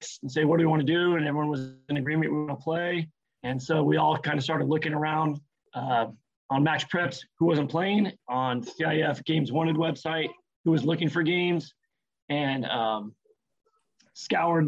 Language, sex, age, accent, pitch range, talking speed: English, male, 30-49, American, 140-170 Hz, 190 wpm